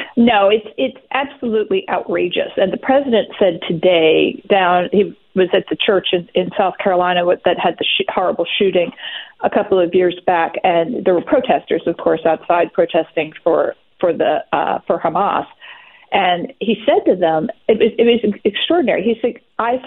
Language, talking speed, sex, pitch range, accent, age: English, 175 wpm, female, 175-225 Hz, American, 40-59